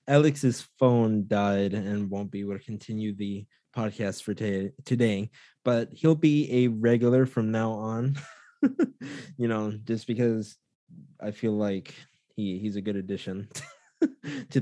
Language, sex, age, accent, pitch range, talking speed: English, male, 20-39, American, 105-130 Hz, 130 wpm